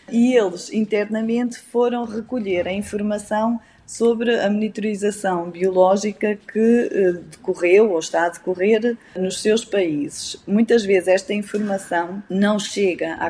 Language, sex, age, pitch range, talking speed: Portuguese, female, 20-39, 185-220 Hz, 120 wpm